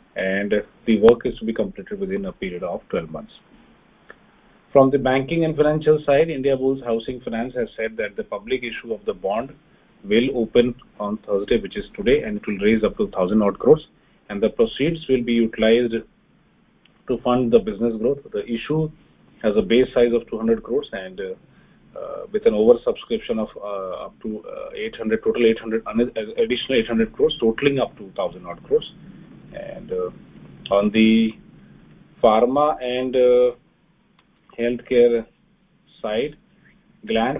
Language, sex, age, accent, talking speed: English, male, 30-49, Indian, 160 wpm